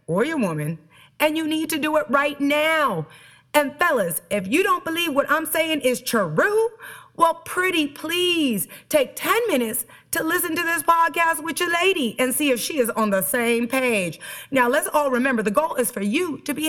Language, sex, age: English, female, 30-49